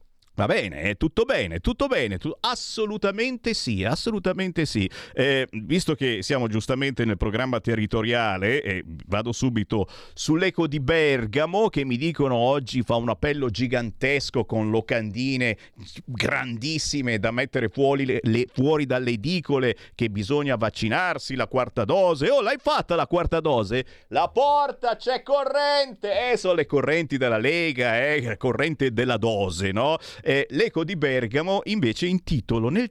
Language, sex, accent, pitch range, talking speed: Italian, male, native, 115-170 Hz, 140 wpm